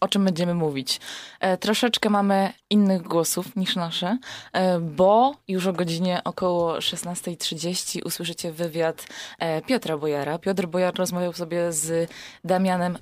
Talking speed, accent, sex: 135 wpm, native, female